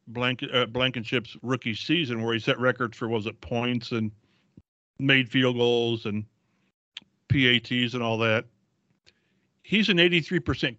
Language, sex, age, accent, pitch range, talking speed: English, male, 50-69, American, 120-155 Hz, 130 wpm